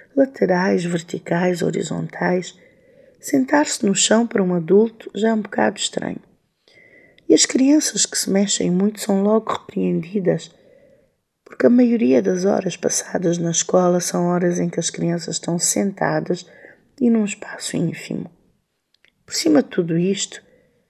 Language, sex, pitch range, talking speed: Portuguese, female, 175-220 Hz, 140 wpm